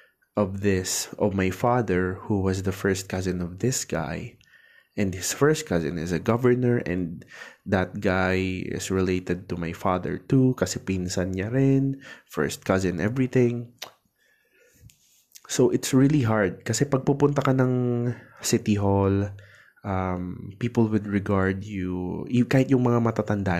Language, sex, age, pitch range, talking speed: Filipino, male, 20-39, 95-125 Hz, 145 wpm